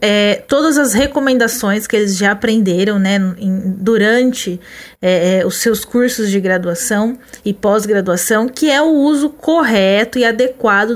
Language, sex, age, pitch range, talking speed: Portuguese, female, 20-39, 200-260 Hz, 125 wpm